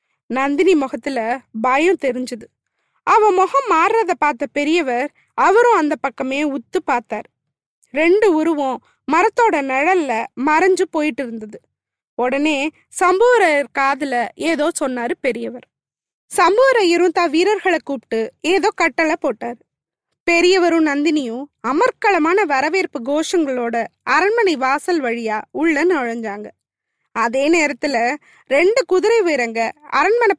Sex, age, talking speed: female, 20-39, 95 wpm